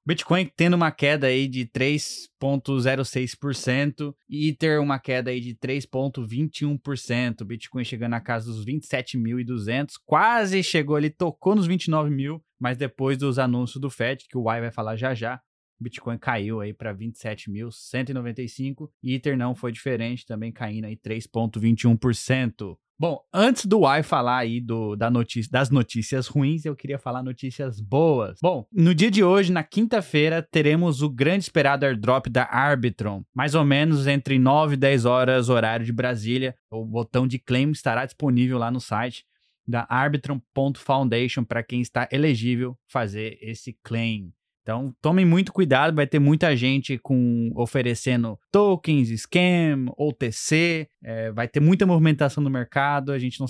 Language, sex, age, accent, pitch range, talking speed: Portuguese, male, 20-39, Brazilian, 120-150 Hz, 150 wpm